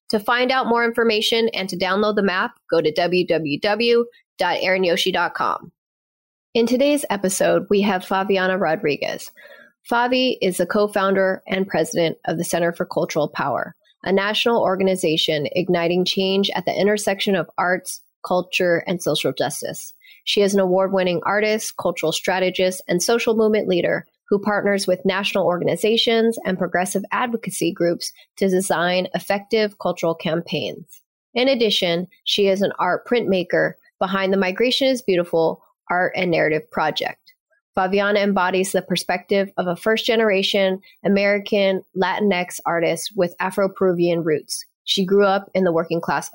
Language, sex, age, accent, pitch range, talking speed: English, female, 20-39, American, 180-215 Hz, 135 wpm